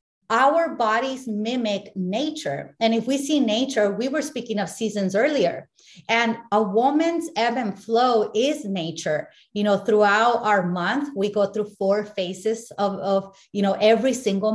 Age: 30-49